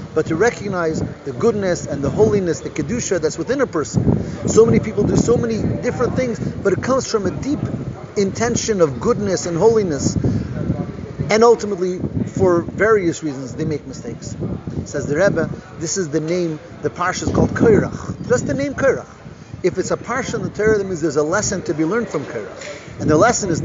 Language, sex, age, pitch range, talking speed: English, male, 40-59, 145-190 Hz, 195 wpm